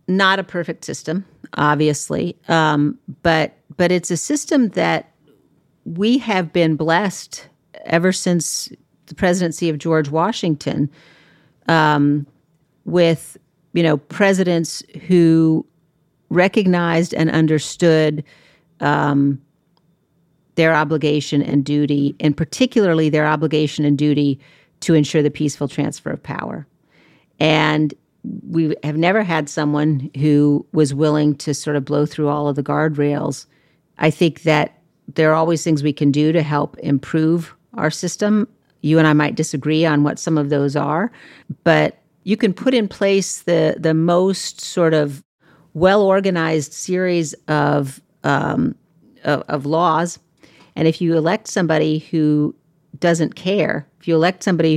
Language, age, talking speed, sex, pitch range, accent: English, 50-69, 135 wpm, female, 150-175 Hz, American